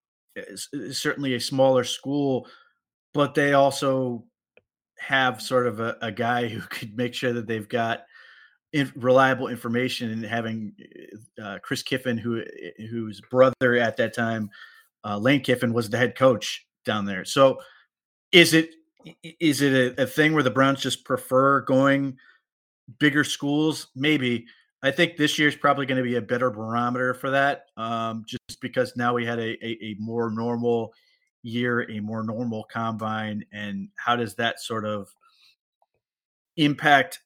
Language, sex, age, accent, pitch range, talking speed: English, male, 30-49, American, 115-135 Hz, 160 wpm